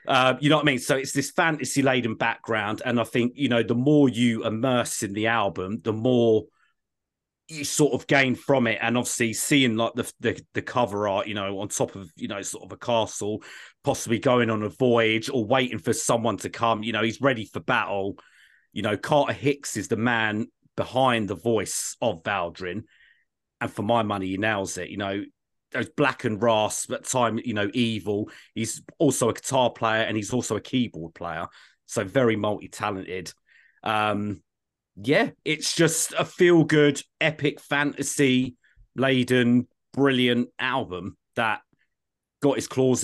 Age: 30-49